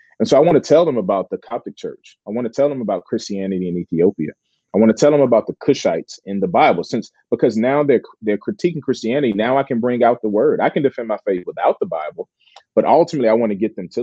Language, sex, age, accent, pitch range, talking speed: English, male, 30-49, American, 100-135 Hz, 260 wpm